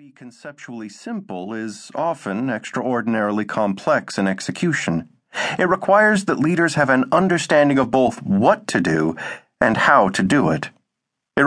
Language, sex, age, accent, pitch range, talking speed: English, male, 40-59, American, 115-160 Hz, 135 wpm